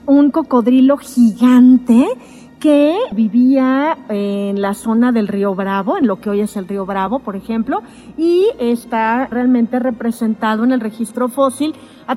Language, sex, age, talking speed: Spanish, female, 40-59, 150 wpm